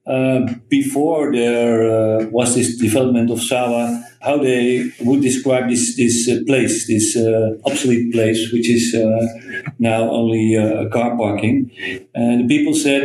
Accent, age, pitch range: Dutch, 50-69, 110-130 Hz